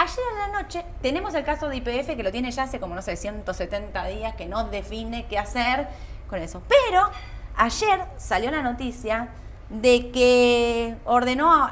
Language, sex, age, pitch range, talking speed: Spanish, female, 20-39, 205-270 Hz, 175 wpm